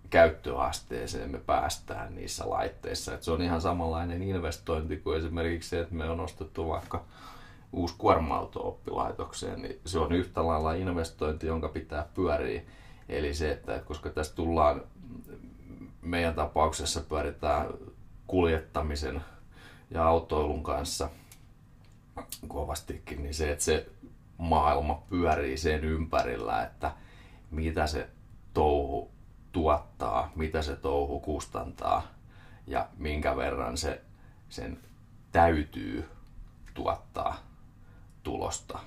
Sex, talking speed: male, 110 wpm